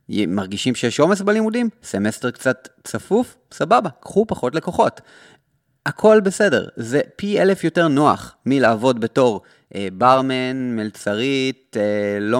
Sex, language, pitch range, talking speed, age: male, Hebrew, 115-155 Hz, 120 wpm, 30-49